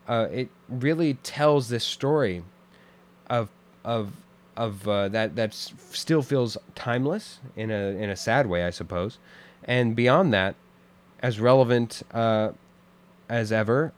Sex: male